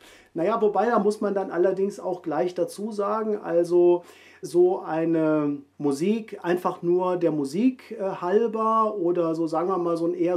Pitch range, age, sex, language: 170-210 Hz, 40-59, male, German